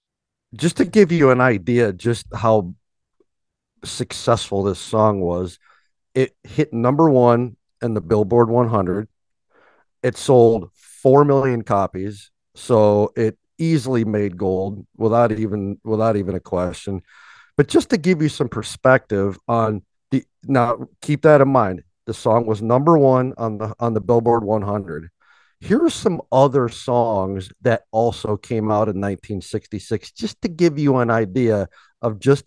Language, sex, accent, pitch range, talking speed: English, male, American, 100-125 Hz, 150 wpm